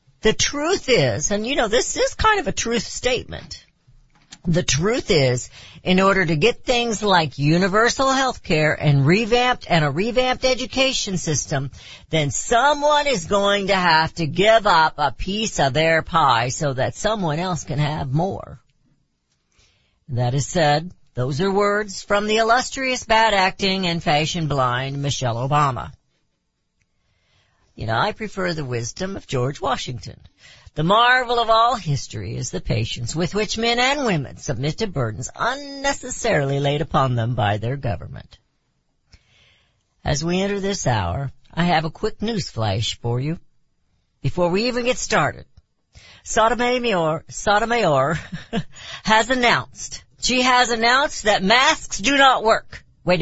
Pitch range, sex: 135-225 Hz, female